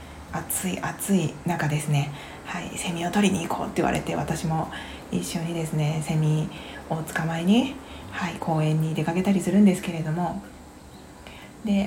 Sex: female